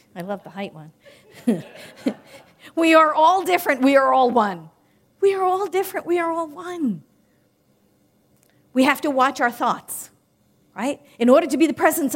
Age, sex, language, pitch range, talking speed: 50-69, female, English, 225-320 Hz, 170 wpm